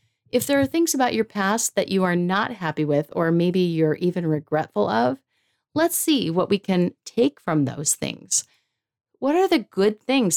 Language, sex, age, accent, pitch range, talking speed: English, female, 50-69, American, 165-230 Hz, 190 wpm